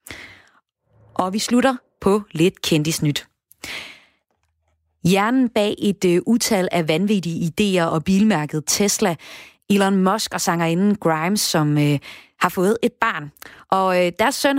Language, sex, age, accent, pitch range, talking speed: Danish, female, 30-49, native, 165-215 Hz, 130 wpm